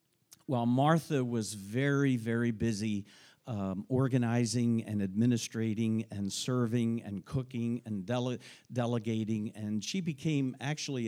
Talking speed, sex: 110 wpm, male